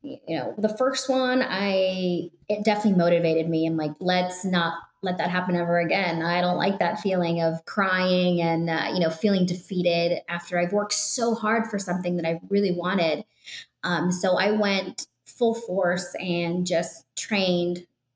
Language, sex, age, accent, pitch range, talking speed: English, female, 20-39, American, 175-210 Hz, 175 wpm